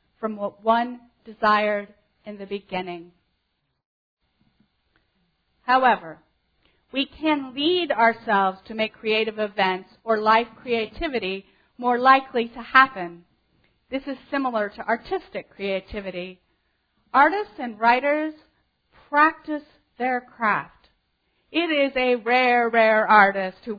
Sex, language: female, English